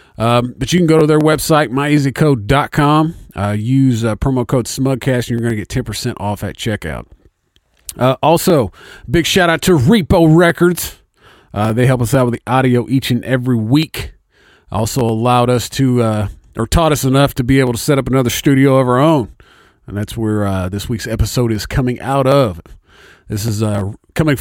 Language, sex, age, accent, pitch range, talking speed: English, male, 40-59, American, 115-150 Hz, 195 wpm